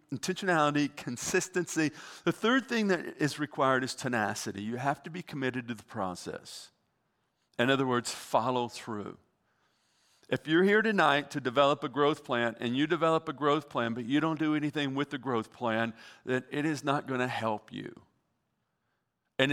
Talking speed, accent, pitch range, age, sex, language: 170 wpm, American, 125-165 Hz, 50-69, male, English